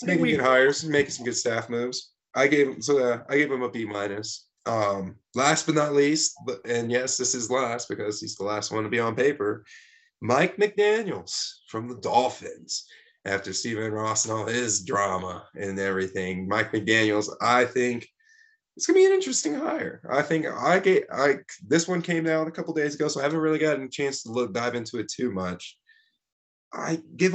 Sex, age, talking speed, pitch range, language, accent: male, 20-39, 210 wpm, 100-155 Hz, English, American